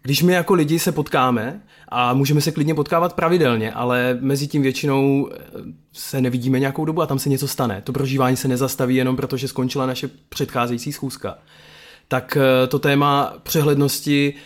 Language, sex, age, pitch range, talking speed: Czech, male, 20-39, 135-160 Hz, 165 wpm